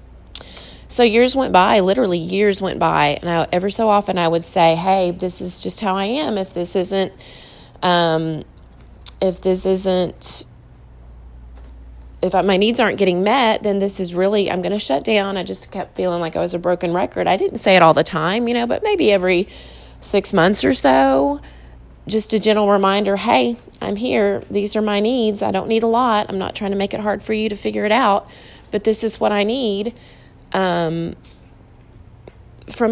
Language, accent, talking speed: English, American, 190 wpm